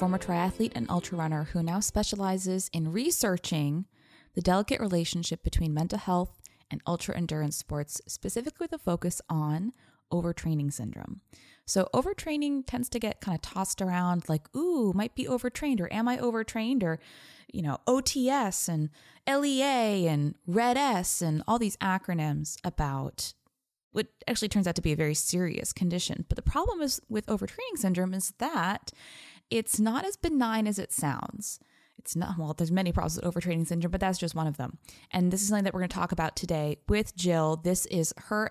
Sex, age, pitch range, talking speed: female, 20-39, 165-220 Hz, 180 wpm